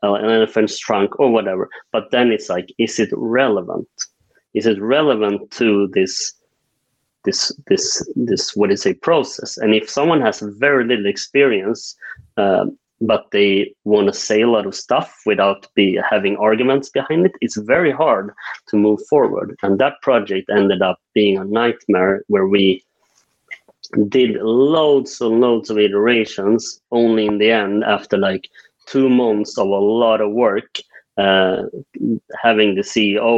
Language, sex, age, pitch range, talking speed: English, male, 30-49, 100-120 Hz, 155 wpm